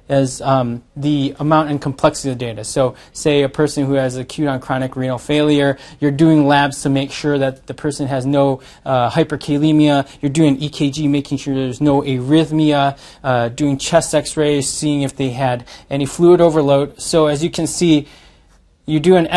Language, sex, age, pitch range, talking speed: English, male, 20-39, 130-155 Hz, 185 wpm